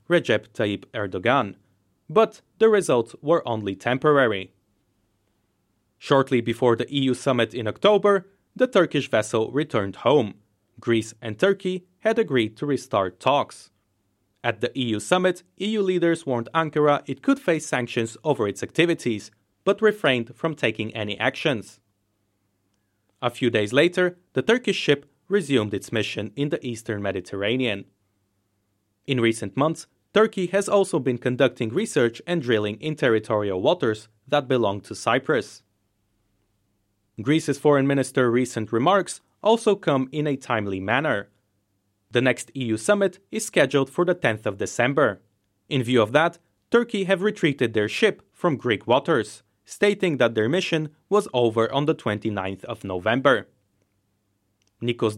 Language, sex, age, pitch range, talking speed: English, male, 30-49, 105-160 Hz, 140 wpm